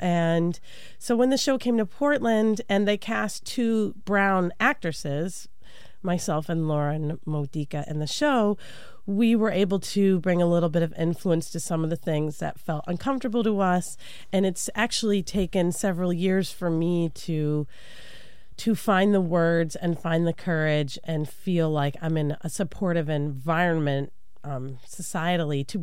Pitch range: 155-200 Hz